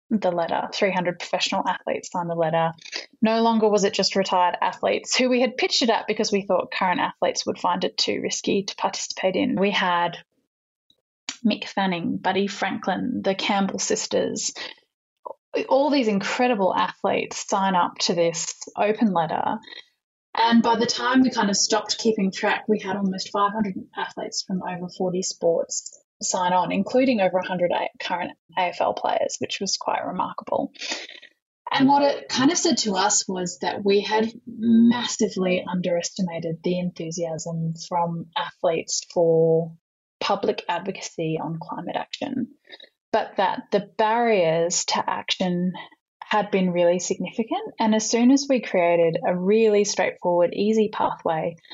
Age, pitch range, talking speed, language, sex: 10-29, 180-230 Hz, 150 wpm, English, female